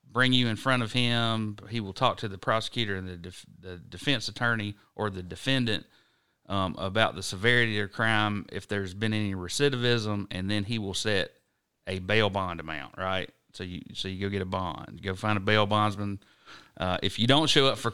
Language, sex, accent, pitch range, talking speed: English, male, American, 100-125 Hz, 215 wpm